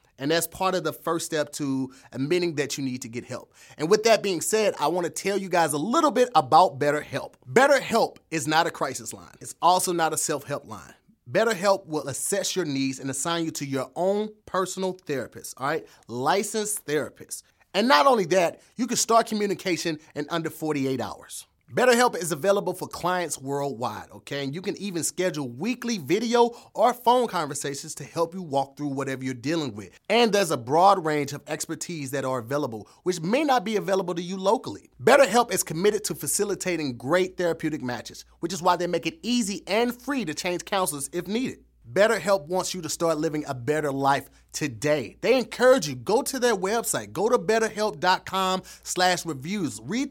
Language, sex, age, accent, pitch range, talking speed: English, male, 30-49, American, 145-205 Hz, 195 wpm